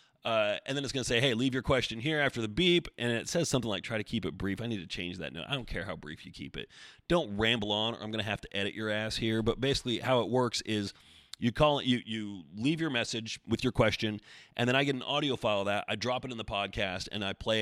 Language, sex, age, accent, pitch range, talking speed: English, male, 30-49, American, 100-130 Hz, 295 wpm